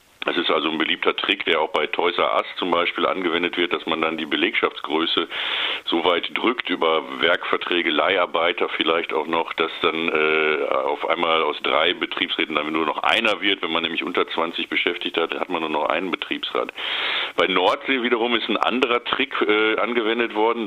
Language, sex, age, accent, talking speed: German, male, 50-69, German, 190 wpm